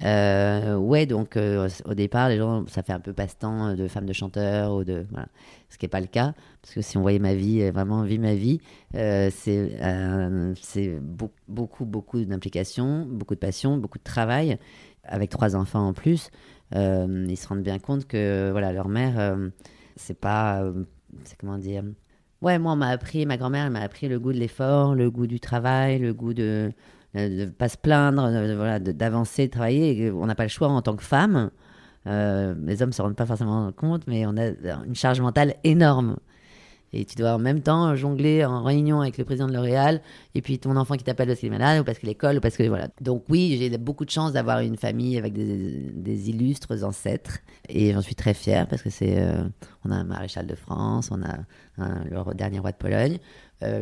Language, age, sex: French, 30-49, female